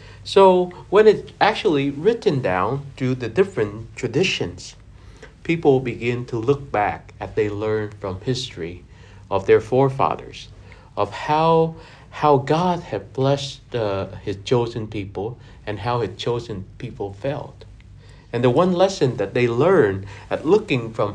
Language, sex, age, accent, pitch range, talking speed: English, male, 60-79, American, 105-145 Hz, 140 wpm